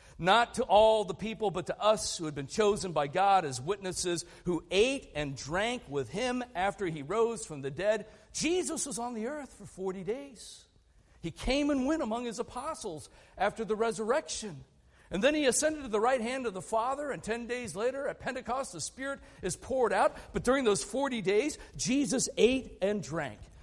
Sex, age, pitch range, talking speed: male, 50-69, 150-245 Hz, 195 wpm